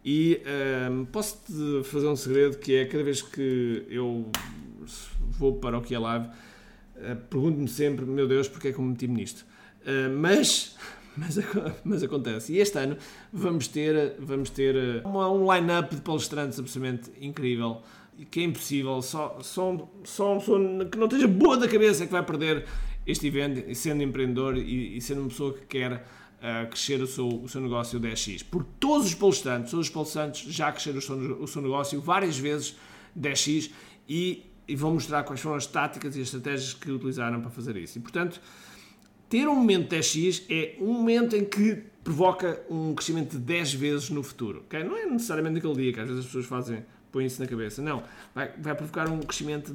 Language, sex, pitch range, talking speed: Portuguese, male, 130-165 Hz, 190 wpm